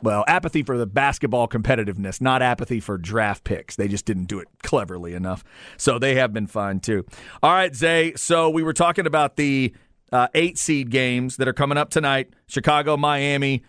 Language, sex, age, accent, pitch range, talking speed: English, male, 40-59, American, 115-145 Hz, 185 wpm